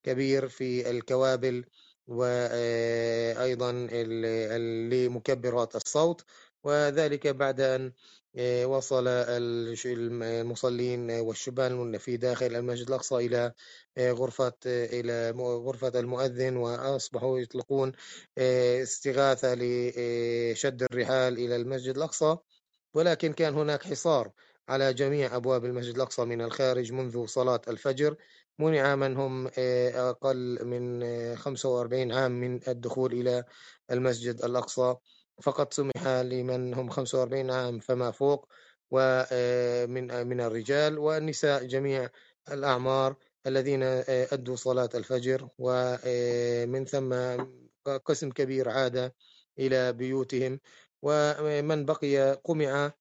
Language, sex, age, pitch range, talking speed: Arabic, male, 30-49, 120-135 Hz, 95 wpm